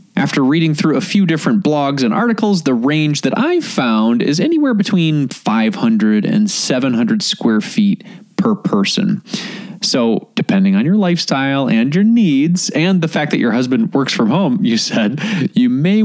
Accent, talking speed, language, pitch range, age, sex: American, 170 wpm, English, 185-225 Hz, 20-39, male